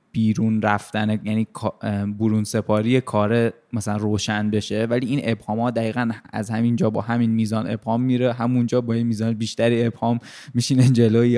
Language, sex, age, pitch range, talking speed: Persian, male, 20-39, 105-120 Hz, 160 wpm